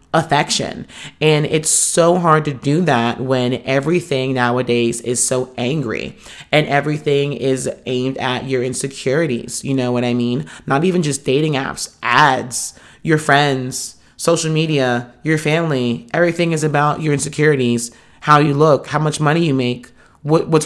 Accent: American